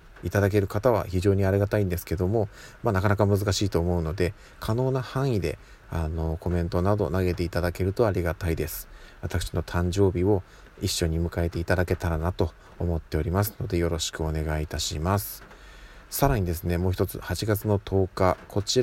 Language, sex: Japanese, male